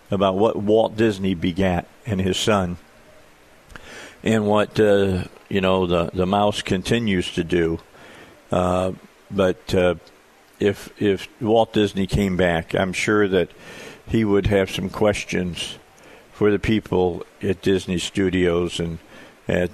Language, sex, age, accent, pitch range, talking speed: English, male, 50-69, American, 85-100 Hz, 135 wpm